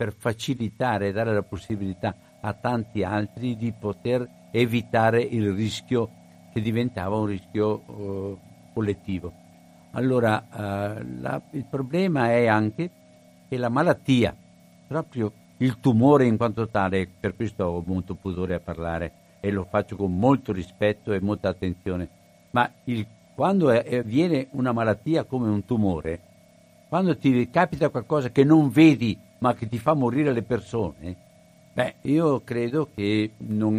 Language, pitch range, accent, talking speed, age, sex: Italian, 100-130 Hz, native, 140 wpm, 60-79, male